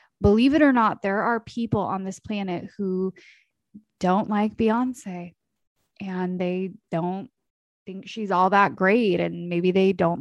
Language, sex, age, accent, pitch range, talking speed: English, female, 20-39, American, 180-220 Hz, 155 wpm